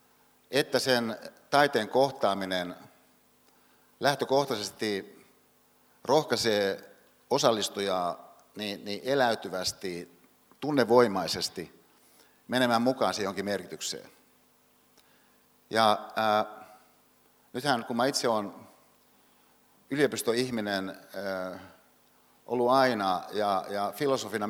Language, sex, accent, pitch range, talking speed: Finnish, male, native, 95-120 Hz, 75 wpm